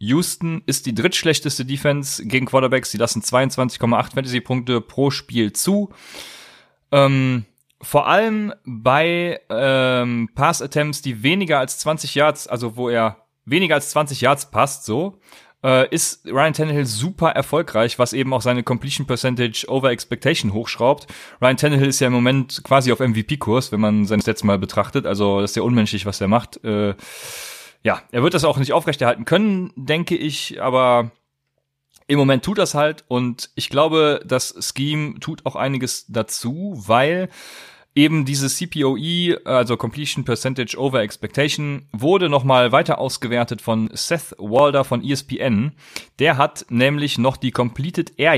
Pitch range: 120-150 Hz